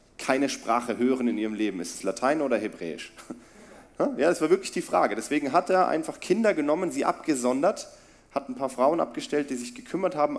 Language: German